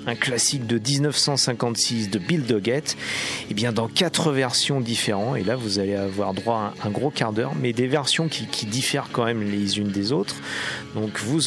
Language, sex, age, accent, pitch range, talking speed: French, male, 40-59, French, 105-140 Hz, 200 wpm